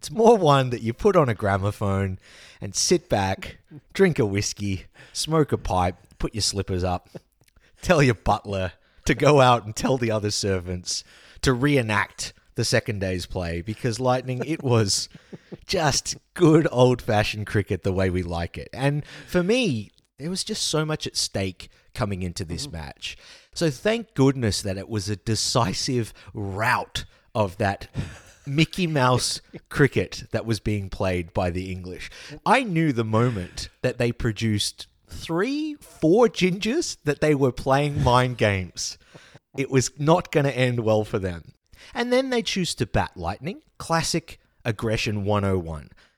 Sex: male